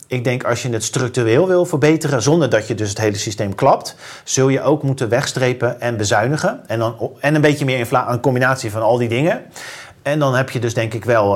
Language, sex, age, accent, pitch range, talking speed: Dutch, male, 40-59, Dutch, 110-135 Hz, 230 wpm